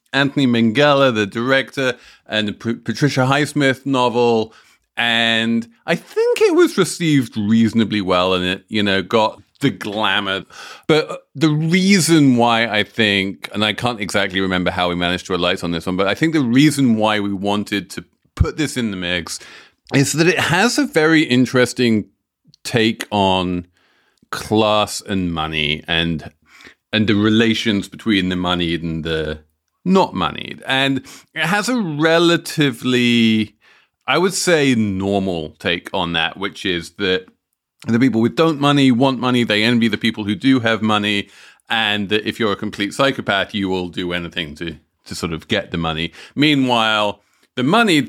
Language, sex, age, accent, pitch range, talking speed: English, male, 30-49, British, 95-130 Hz, 165 wpm